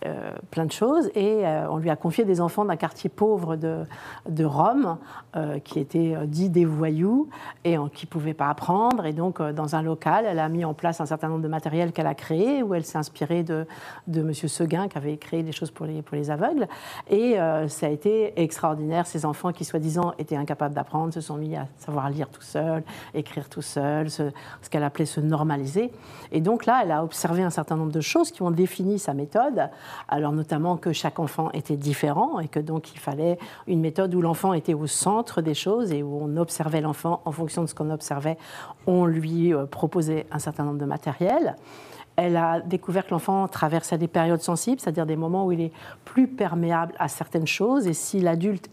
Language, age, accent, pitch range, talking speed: French, 50-69, French, 150-175 Hz, 220 wpm